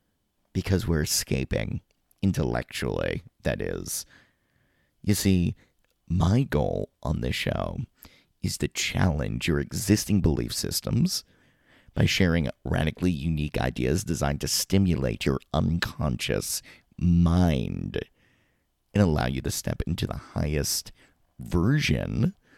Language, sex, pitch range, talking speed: English, male, 70-95 Hz, 105 wpm